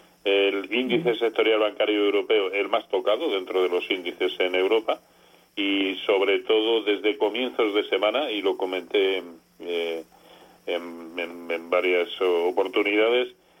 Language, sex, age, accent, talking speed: Spanish, male, 40-59, Spanish, 130 wpm